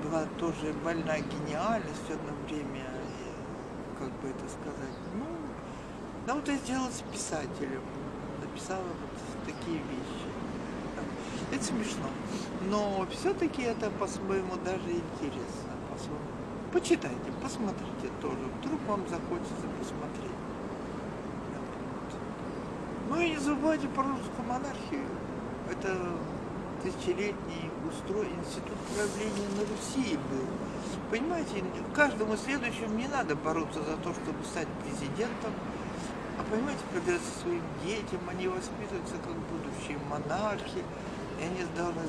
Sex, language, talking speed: male, Russian, 110 wpm